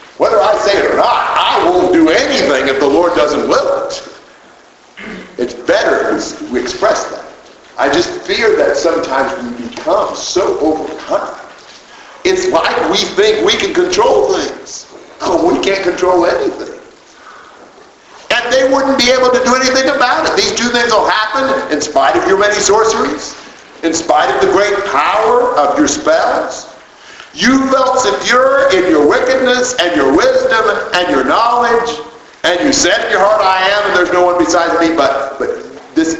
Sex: male